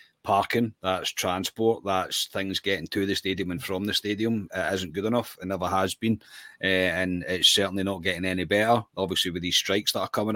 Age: 30-49